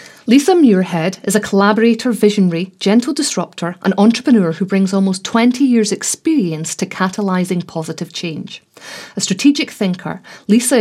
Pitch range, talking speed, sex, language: 175-220 Hz, 135 wpm, female, English